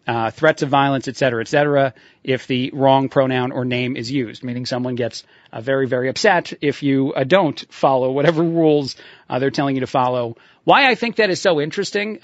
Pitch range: 135-165 Hz